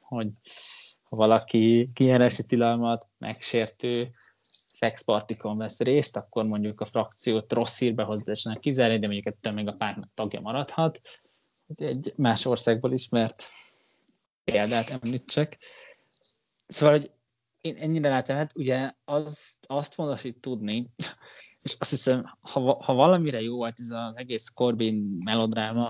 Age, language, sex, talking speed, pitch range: 20-39, Hungarian, male, 130 wpm, 110-125 Hz